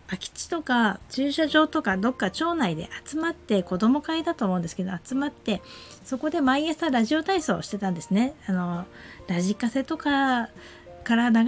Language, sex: Japanese, female